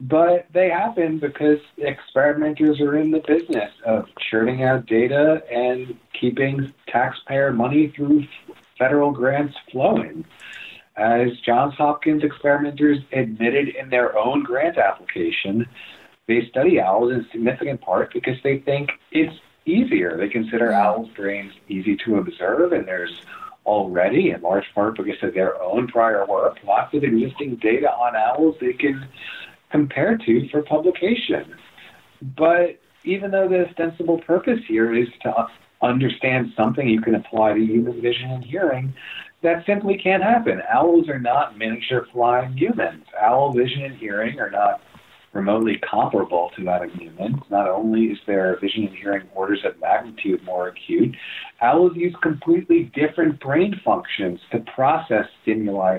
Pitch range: 115-160 Hz